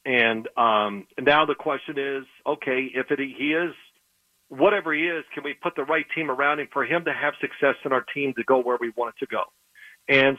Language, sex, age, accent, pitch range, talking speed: English, male, 40-59, American, 140-180 Hz, 225 wpm